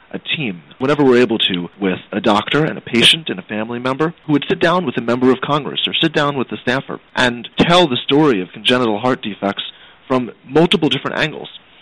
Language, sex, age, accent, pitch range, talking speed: English, male, 30-49, American, 110-140 Hz, 220 wpm